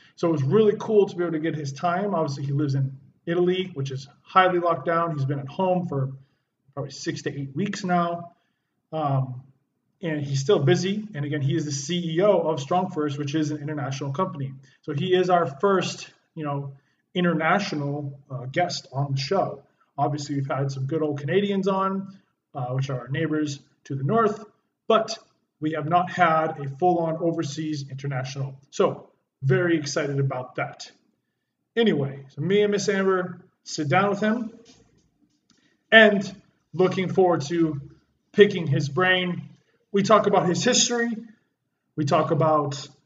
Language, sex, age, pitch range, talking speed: English, male, 20-39, 140-180 Hz, 165 wpm